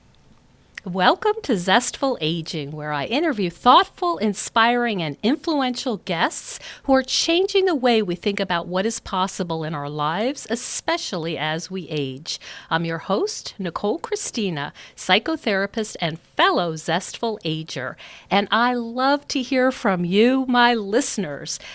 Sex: female